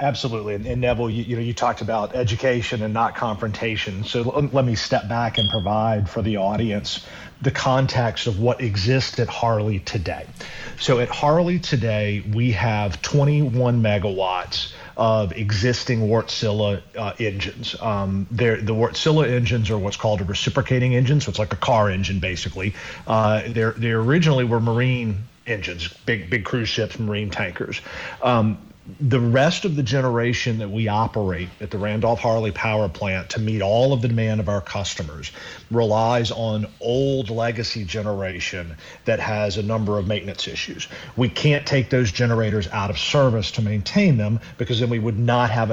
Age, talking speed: 40-59, 170 wpm